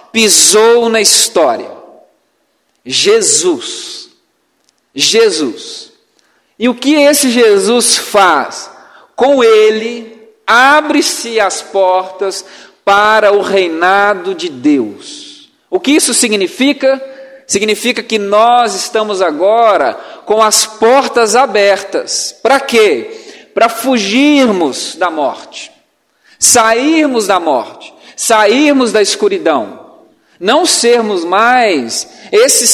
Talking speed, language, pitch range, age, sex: 95 wpm, Portuguese, 210-345 Hz, 40-59, male